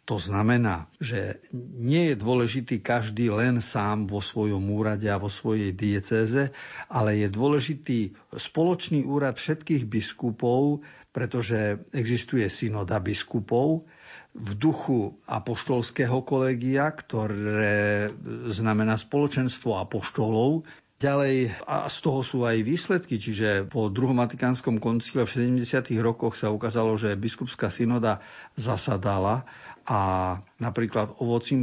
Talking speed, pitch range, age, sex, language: 110 wpm, 110-130 Hz, 50-69, male, Slovak